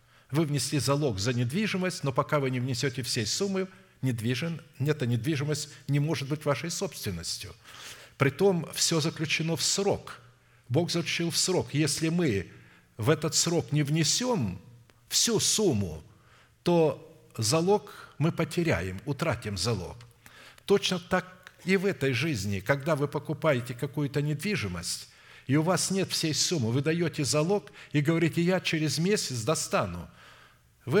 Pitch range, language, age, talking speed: 120-165 Hz, Russian, 50-69, 135 wpm